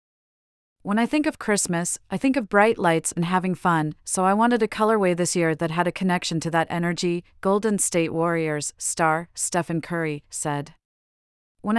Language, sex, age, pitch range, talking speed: English, female, 30-49, 165-200 Hz, 180 wpm